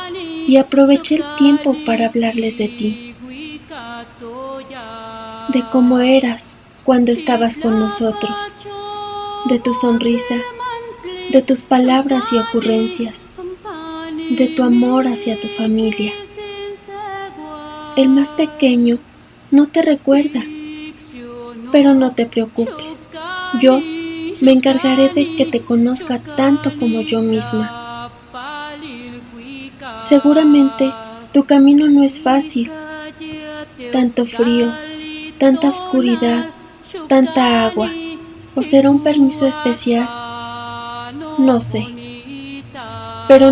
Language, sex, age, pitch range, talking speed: Spanish, female, 20-39, 235-305 Hz, 95 wpm